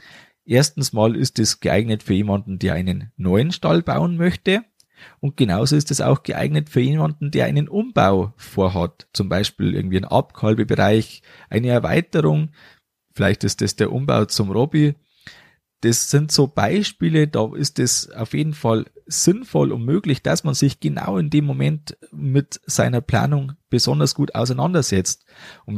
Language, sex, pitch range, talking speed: German, male, 105-150 Hz, 155 wpm